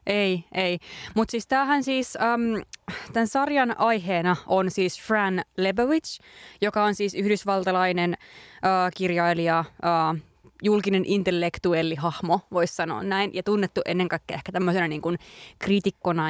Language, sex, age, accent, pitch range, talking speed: Finnish, female, 20-39, native, 175-220 Hz, 125 wpm